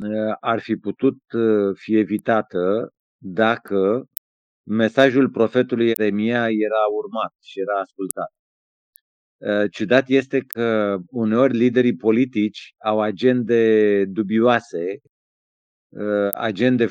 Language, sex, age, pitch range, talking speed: Romanian, male, 50-69, 110-135 Hz, 85 wpm